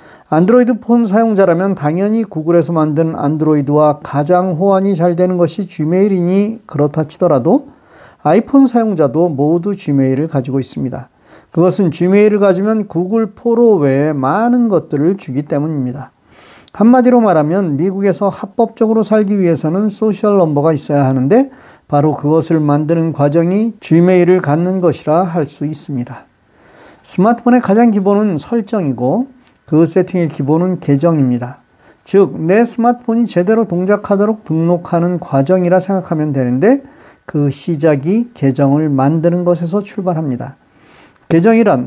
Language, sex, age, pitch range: Korean, male, 40-59, 150-200 Hz